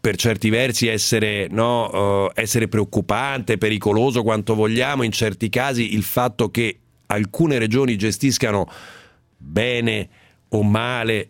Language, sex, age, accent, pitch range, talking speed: Italian, male, 50-69, native, 110-145 Hz, 110 wpm